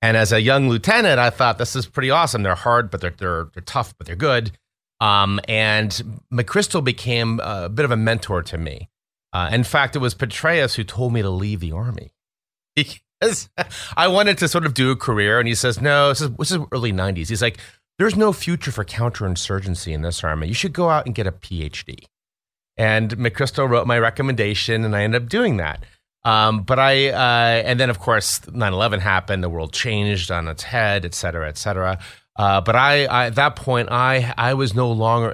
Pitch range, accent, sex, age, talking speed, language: 95-125 Hz, American, male, 30-49, 210 wpm, English